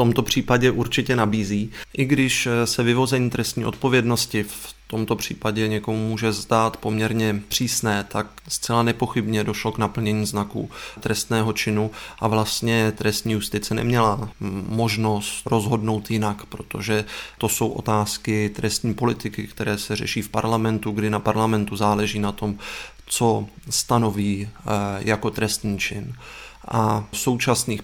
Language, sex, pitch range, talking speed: Czech, male, 105-115 Hz, 130 wpm